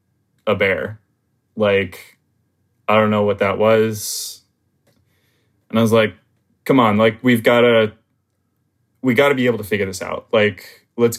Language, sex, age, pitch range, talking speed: English, male, 20-39, 105-120 Hz, 160 wpm